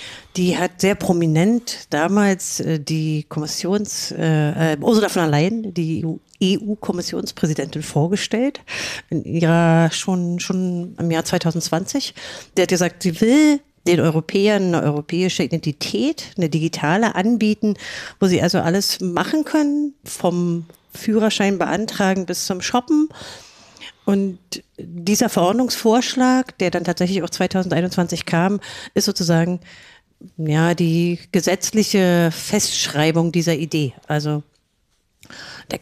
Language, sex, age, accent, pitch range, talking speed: German, female, 50-69, German, 165-205 Hz, 105 wpm